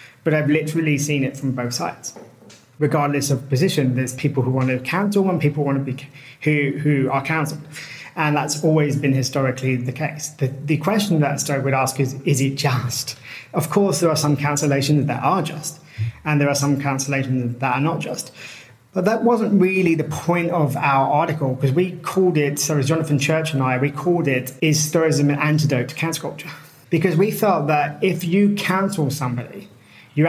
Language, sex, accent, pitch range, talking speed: English, male, British, 135-160 Hz, 200 wpm